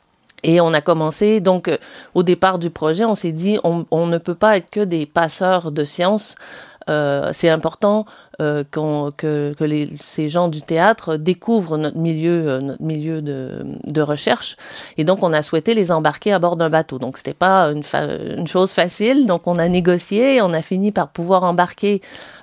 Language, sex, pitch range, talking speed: French, female, 155-190 Hz, 200 wpm